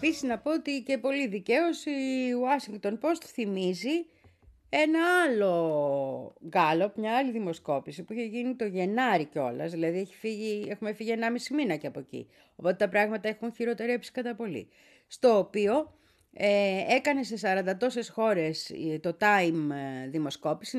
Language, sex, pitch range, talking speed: Greek, female, 175-260 Hz, 150 wpm